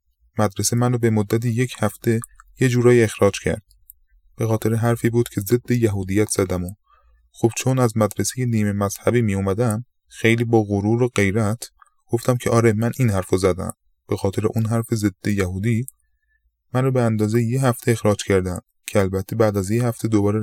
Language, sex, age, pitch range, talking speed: Persian, male, 20-39, 95-120 Hz, 175 wpm